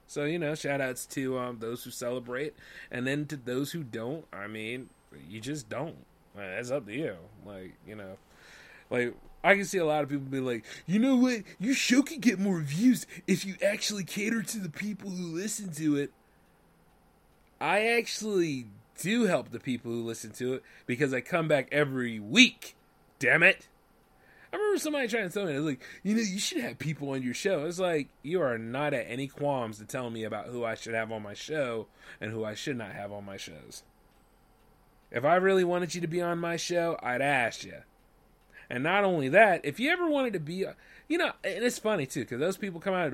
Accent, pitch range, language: American, 125-200 Hz, English